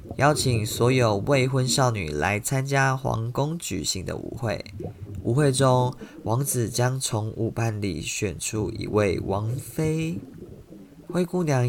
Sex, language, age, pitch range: male, Chinese, 20-39, 110-135 Hz